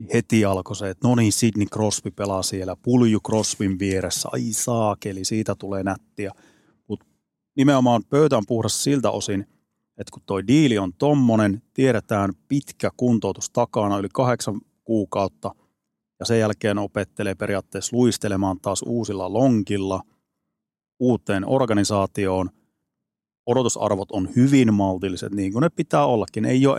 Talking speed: 135 wpm